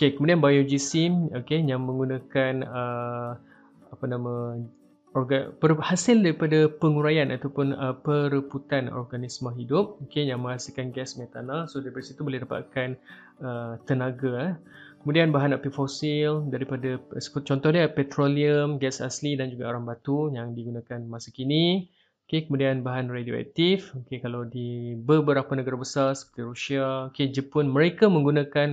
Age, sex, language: 20-39, male, Malay